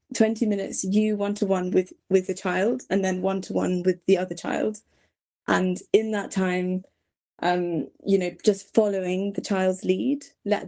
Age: 20-39